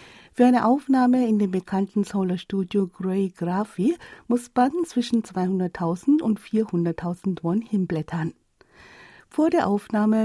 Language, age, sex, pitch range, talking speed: German, 50-69, female, 180-245 Hz, 125 wpm